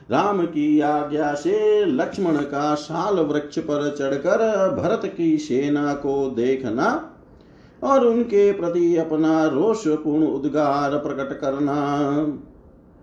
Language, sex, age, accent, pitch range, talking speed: Hindi, male, 50-69, native, 145-175 Hz, 105 wpm